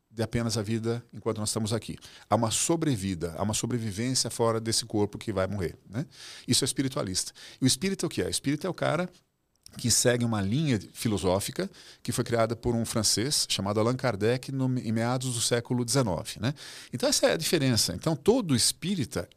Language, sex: Portuguese, male